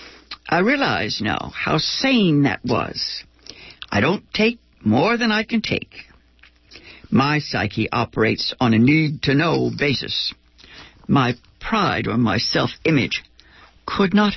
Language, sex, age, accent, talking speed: English, female, 60-79, American, 120 wpm